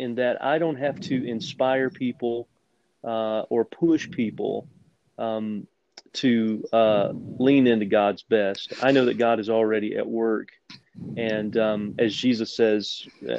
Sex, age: male, 30-49